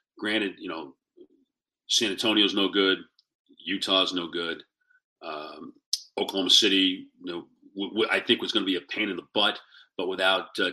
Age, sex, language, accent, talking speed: 40-59, male, English, American, 175 wpm